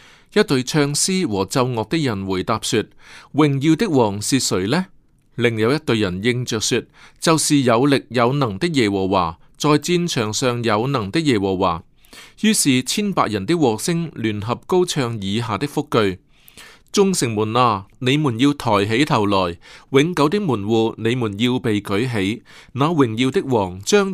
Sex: male